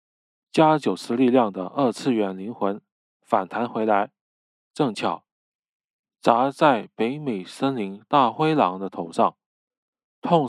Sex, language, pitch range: male, Chinese, 95-135 Hz